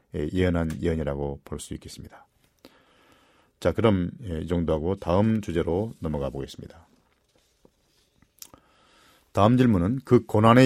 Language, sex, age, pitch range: Korean, male, 40-59, 85-120 Hz